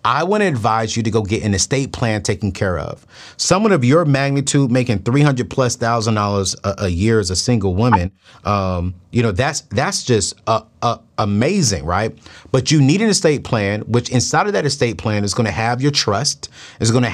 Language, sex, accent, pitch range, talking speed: English, male, American, 110-155 Hz, 200 wpm